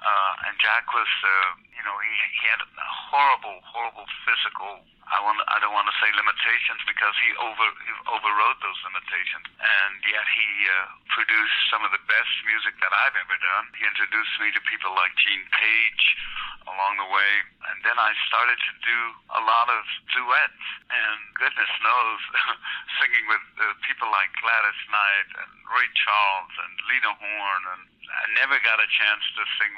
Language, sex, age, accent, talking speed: English, male, 60-79, American, 175 wpm